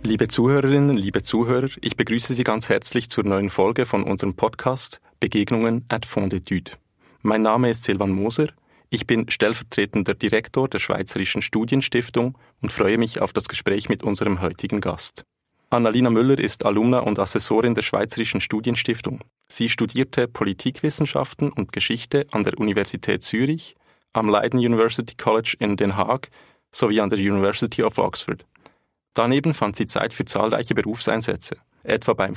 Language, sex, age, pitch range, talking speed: German, male, 30-49, 105-130 Hz, 150 wpm